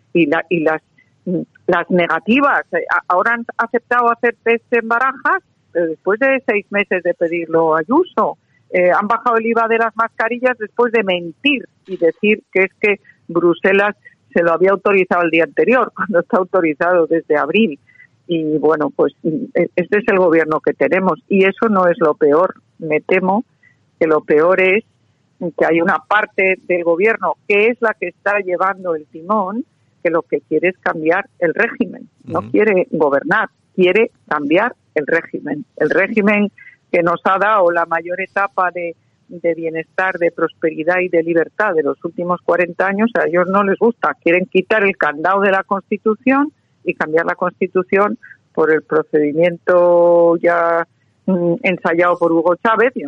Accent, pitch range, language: Spanish, 165-210 Hz, Spanish